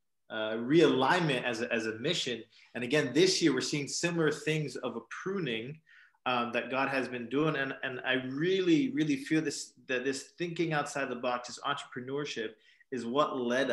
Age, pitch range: 20-39, 120-145 Hz